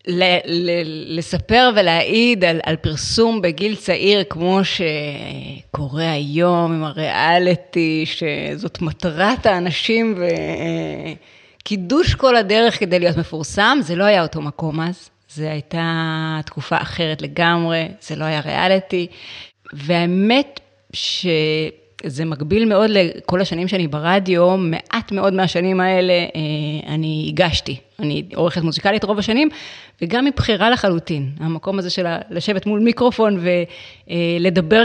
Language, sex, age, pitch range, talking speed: Hebrew, female, 30-49, 155-195 Hz, 115 wpm